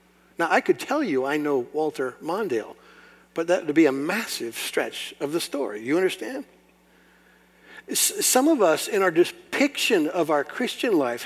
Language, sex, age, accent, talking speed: English, male, 60-79, American, 165 wpm